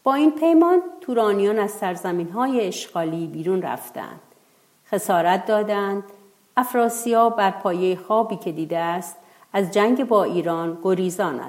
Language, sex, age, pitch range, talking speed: Persian, female, 50-69, 175-235 Hz, 120 wpm